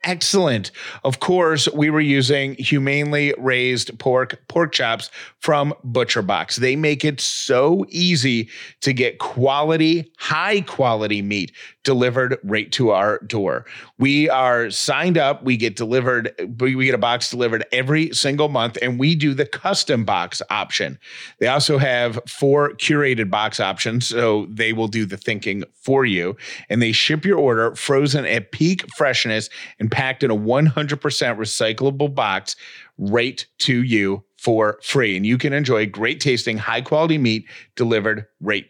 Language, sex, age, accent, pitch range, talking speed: English, male, 30-49, American, 115-145 Hz, 155 wpm